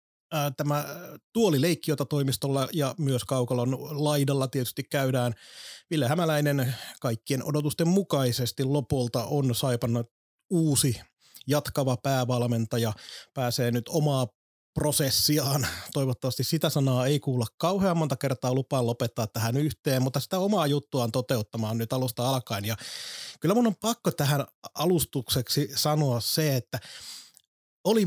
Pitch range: 125-150 Hz